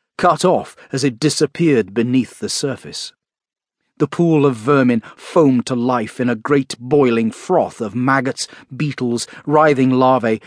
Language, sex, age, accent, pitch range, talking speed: English, male, 40-59, British, 120-155 Hz, 145 wpm